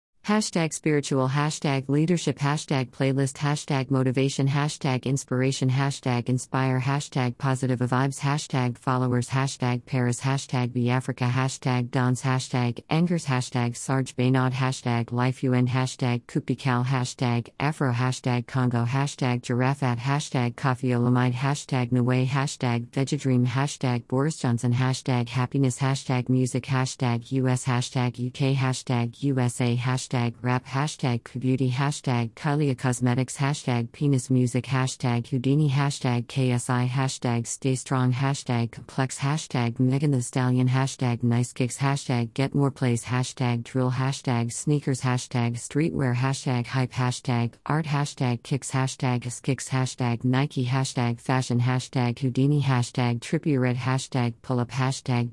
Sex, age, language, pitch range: female, 50-69, English, 125-135 Hz